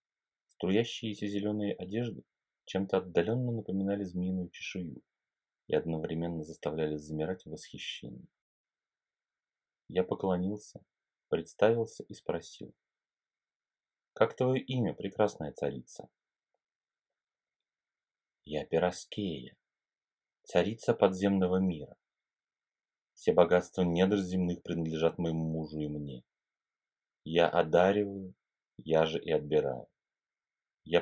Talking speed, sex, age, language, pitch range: 85 wpm, male, 30-49, Russian, 80-100 Hz